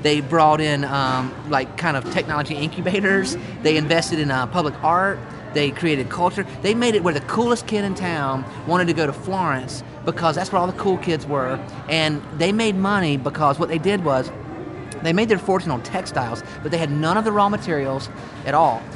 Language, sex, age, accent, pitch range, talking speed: English, male, 30-49, American, 150-195 Hz, 205 wpm